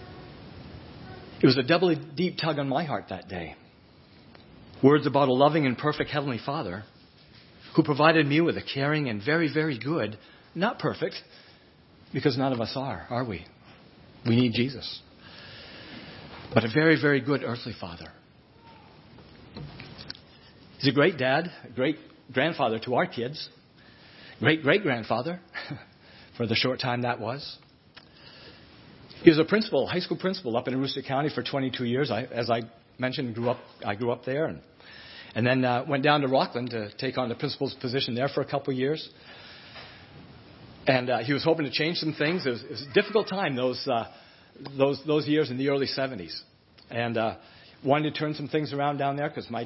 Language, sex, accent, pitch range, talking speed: English, male, American, 120-150 Hz, 180 wpm